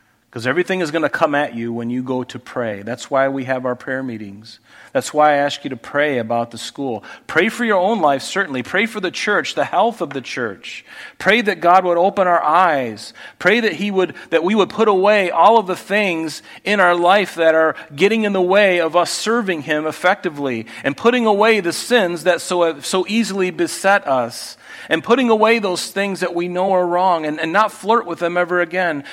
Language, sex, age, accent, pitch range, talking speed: English, male, 40-59, American, 115-180 Hz, 220 wpm